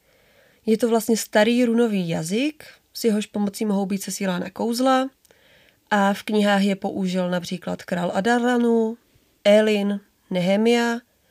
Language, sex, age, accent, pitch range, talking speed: Czech, female, 30-49, native, 190-230 Hz, 120 wpm